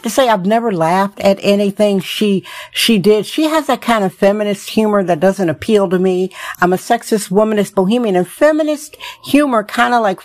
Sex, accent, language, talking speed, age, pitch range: female, American, English, 195 wpm, 50-69, 180-225 Hz